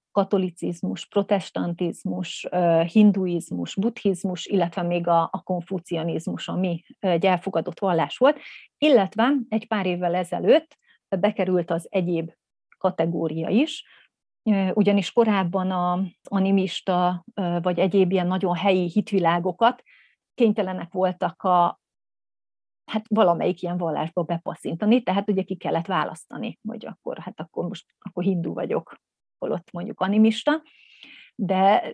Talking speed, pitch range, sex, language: 105 wpm, 175-200 Hz, female, Hungarian